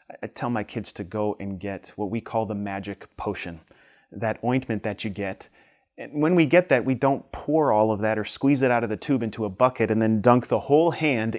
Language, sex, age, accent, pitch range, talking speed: English, male, 30-49, American, 105-130 Hz, 240 wpm